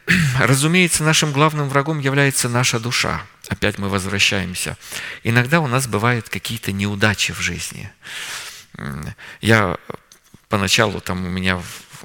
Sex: male